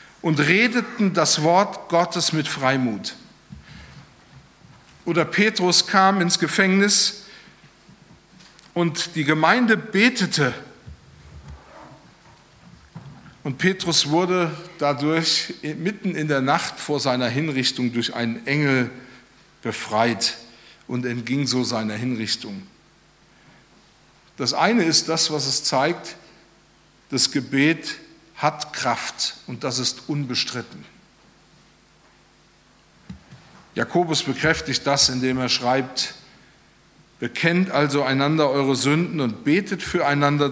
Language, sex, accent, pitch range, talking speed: German, male, German, 130-180 Hz, 95 wpm